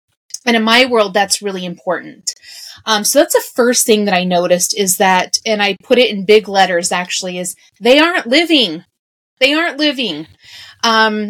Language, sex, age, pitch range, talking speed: English, female, 30-49, 190-230 Hz, 180 wpm